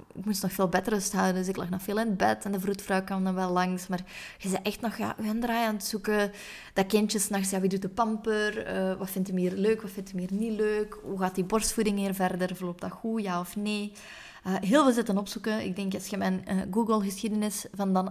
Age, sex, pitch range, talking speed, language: 20-39, female, 180-210 Hz, 260 wpm, Dutch